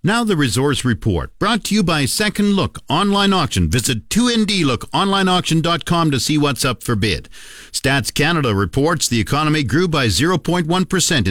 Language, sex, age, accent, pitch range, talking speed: English, male, 50-69, American, 115-155 Hz, 150 wpm